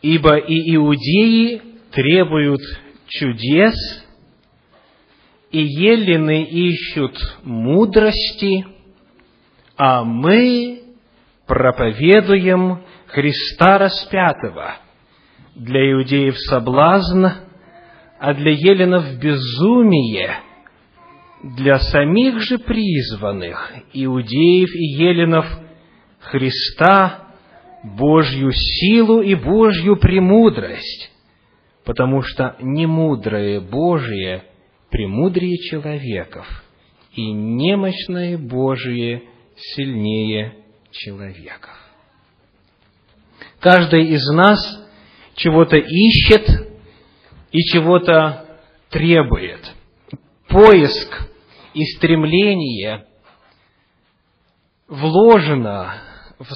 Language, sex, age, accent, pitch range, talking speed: Russian, male, 40-59, native, 130-190 Hz, 65 wpm